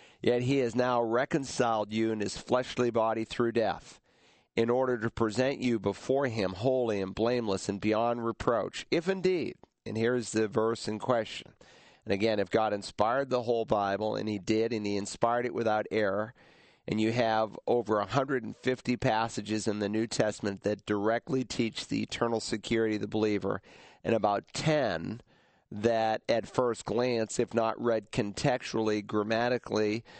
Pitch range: 110-125 Hz